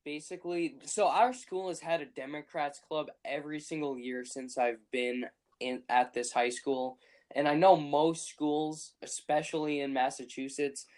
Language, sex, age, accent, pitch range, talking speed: English, male, 10-29, American, 135-155 Hz, 155 wpm